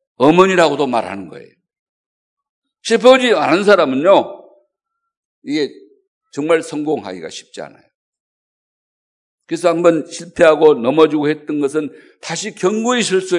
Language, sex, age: Korean, male, 50-69